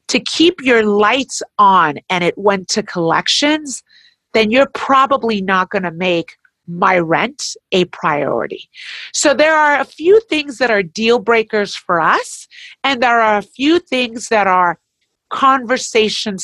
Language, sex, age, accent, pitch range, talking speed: English, female, 40-59, American, 190-275 Hz, 155 wpm